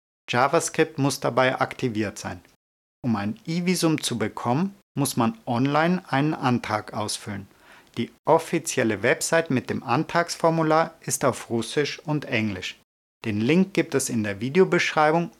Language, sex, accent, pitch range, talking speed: German, male, German, 110-155 Hz, 135 wpm